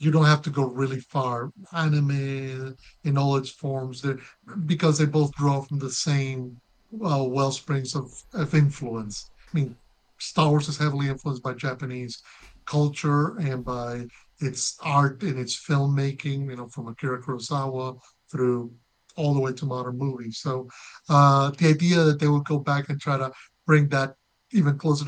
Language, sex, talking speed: English, male, 165 wpm